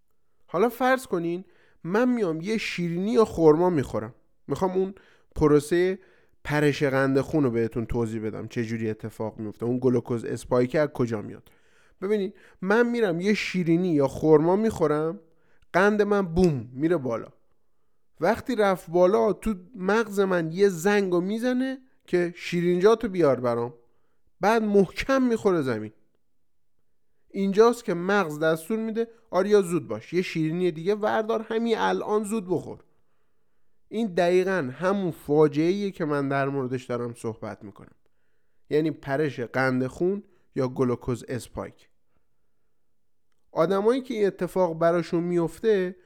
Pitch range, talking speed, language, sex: 135-205 Hz, 130 wpm, Persian, male